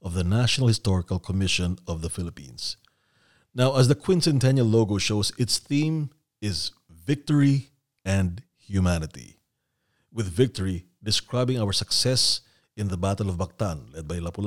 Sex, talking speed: male, 135 wpm